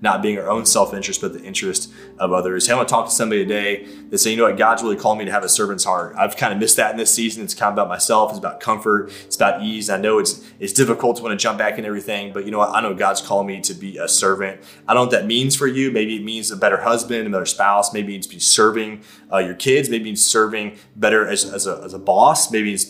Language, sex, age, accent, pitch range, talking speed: English, male, 20-39, American, 95-110 Hz, 295 wpm